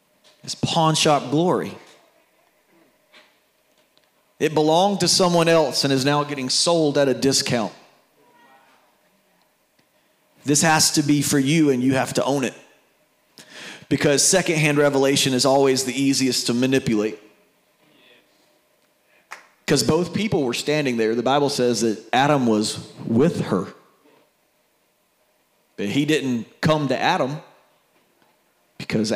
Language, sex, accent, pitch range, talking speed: English, male, American, 140-180 Hz, 125 wpm